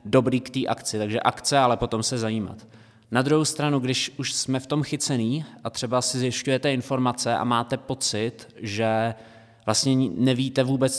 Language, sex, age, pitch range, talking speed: Czech, male, 20-39, 110-125 Hz, 170 wpm